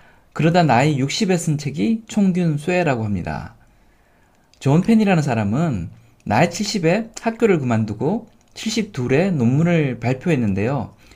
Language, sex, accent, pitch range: Korean, male, native, 115-180 Hz